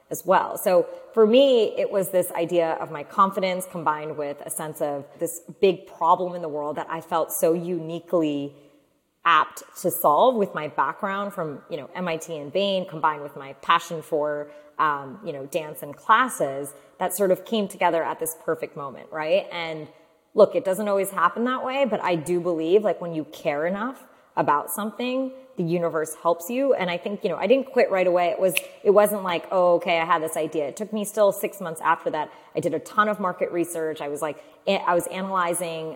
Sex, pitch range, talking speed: female, 155-195 Hz, 210 wpm